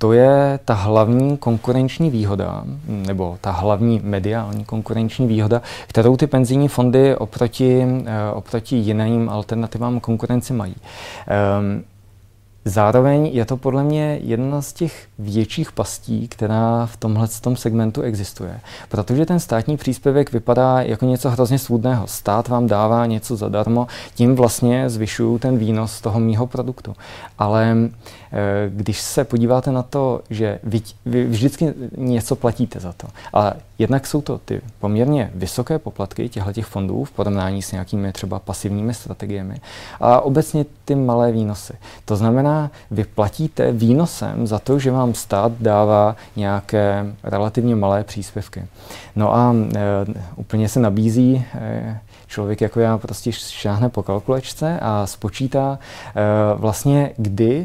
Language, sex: Czech, male